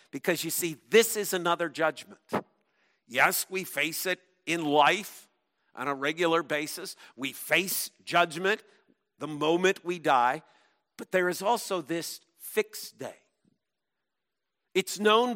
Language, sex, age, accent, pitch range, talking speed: English, male, 50-69, American, 170-225 Hz, 130 wpm